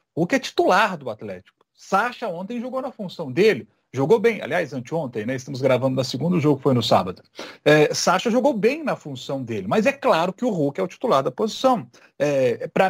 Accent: Brazilian